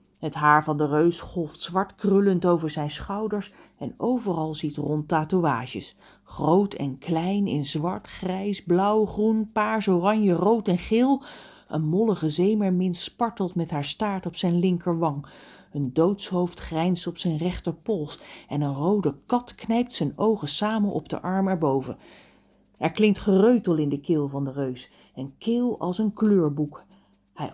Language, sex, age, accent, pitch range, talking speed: Dutch, female, 40-59, Dutch, 155-205 Hz, 160 wpm